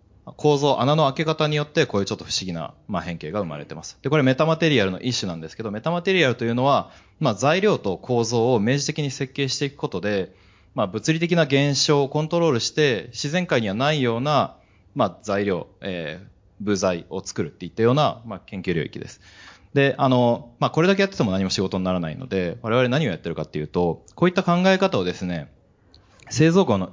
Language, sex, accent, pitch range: Japanese, male, native, 95-150 Hz